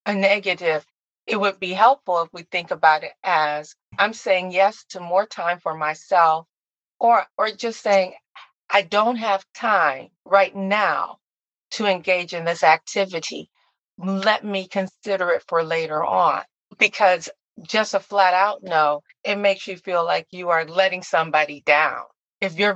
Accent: American